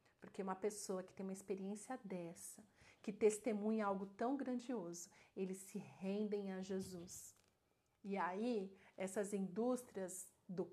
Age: 40-59